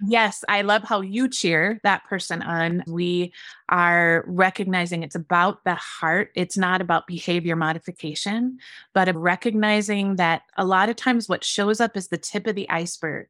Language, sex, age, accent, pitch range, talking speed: English, female, 20-39, American, 170-200 Hz, 170 wpm